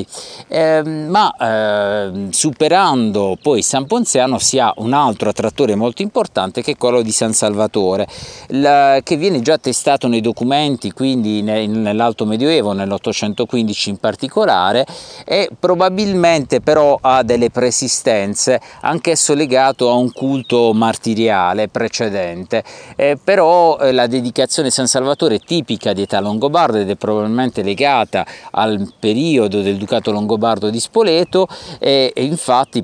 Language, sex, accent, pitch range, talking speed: Italian, male, native, 105-135 Hz, 135 wpm